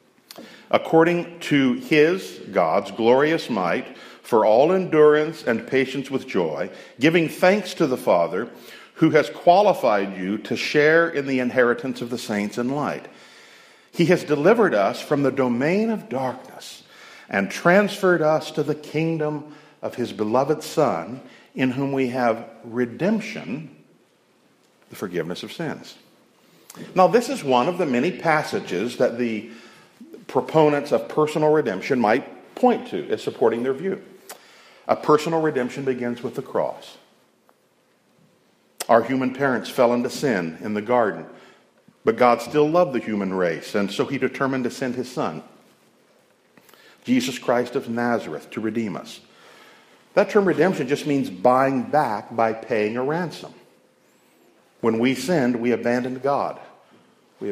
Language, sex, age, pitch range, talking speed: English, male, 50-69, 120-165 Hz, 145 wpm